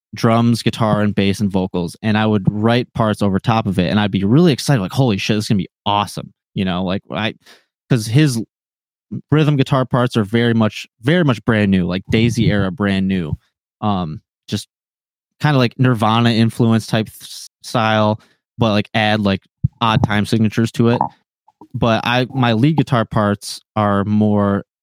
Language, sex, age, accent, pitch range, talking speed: English, male, 20-39, American, 100-120 Hz, 180 wpm